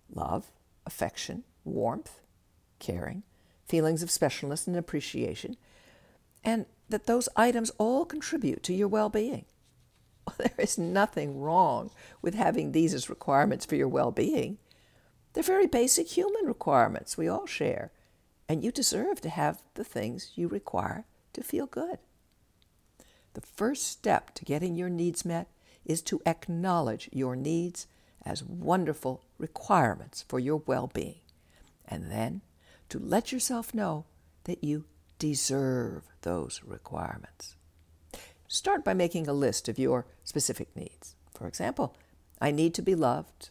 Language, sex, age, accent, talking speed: English, female, 60-79, American, 130 wpm